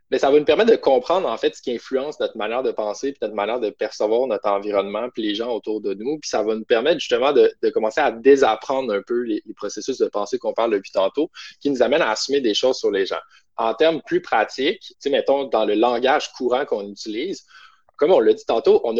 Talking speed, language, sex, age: 255 wpm, French, male, 20-39